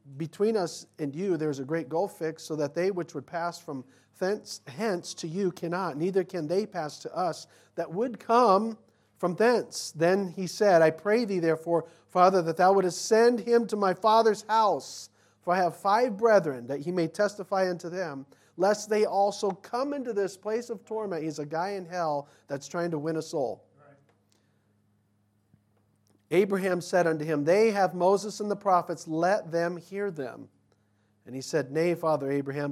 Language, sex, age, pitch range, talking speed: English, male, 50-69, 140-190 Hz, 185 wpm